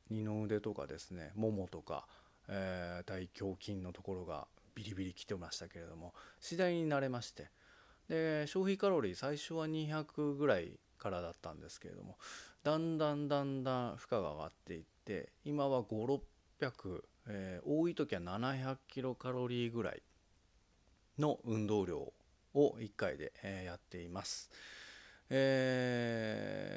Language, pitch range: Japanese, 95-140 Hz